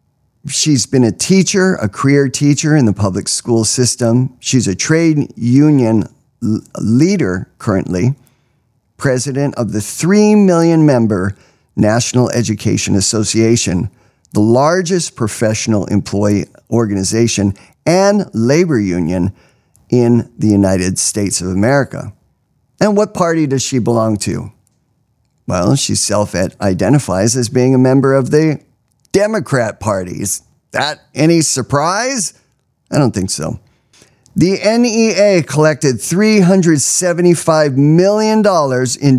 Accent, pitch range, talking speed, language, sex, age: American, 105-145 Hz, 110 wpm, English, male, 50-69